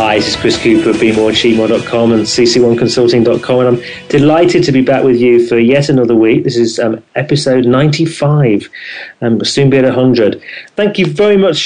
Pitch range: 125-155 Hz